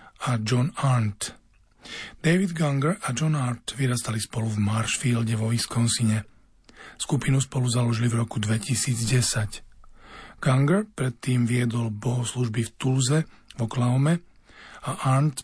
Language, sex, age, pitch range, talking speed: Slovak, male, 40-59, 110-135 Hz, 120 wpm